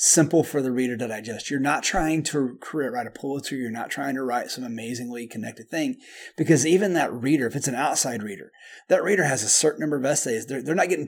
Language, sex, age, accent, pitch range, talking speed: English, male, 30-49, American, 125-160 Hz, 240 wpm